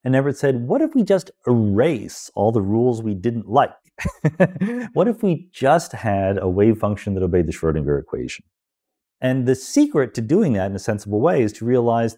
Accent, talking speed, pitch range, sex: American, 195 wpm, 95-135 Hz, male